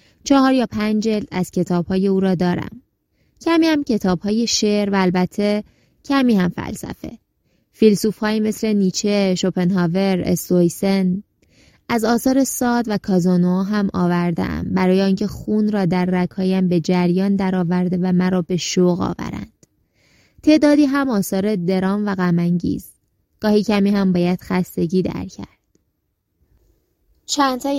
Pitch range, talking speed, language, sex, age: 180-210 Hz, 125 wpm, Persian, female, 20-39